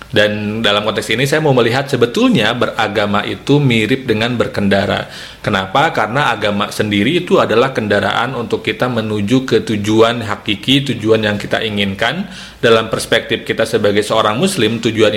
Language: Indonesian